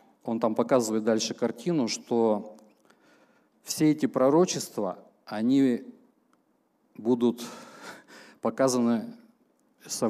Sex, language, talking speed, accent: male, Russian, 75 wpm, native